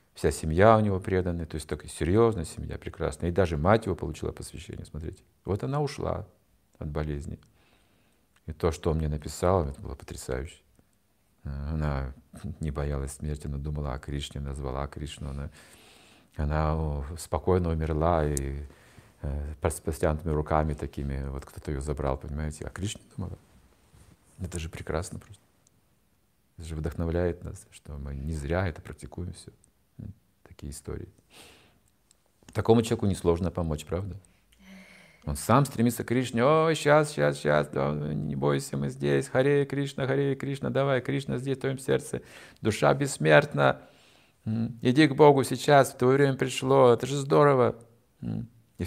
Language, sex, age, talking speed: Russian, male, 40-59, 150 wpm